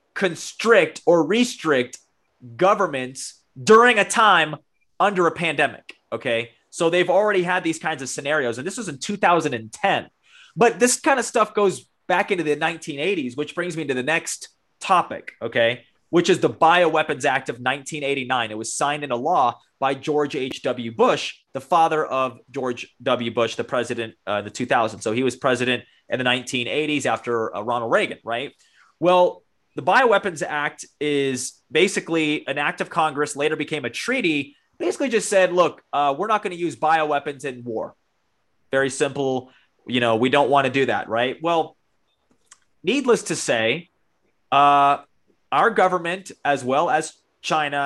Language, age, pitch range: English, 20-39, 130-180 Hz